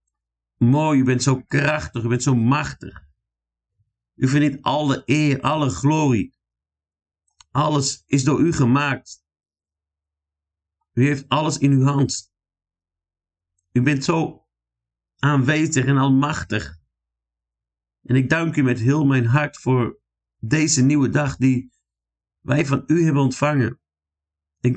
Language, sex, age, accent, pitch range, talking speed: Dutch, male, 50-69, Dutch, 85-140 Hz, 125 wpm